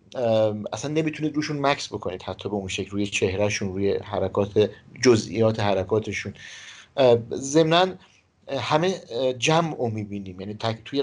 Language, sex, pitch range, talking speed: Persian, male, 105-125 Hz, 125 wpm